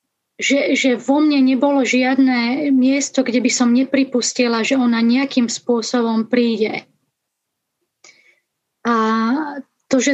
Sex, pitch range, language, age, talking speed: female, 225-255 Hz, Czech, 20-39, 110 wpm